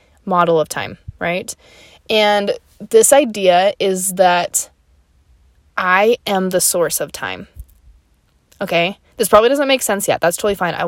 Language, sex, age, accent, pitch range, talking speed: English, female, 20-39, American, 175-230 Hz, 145 wpm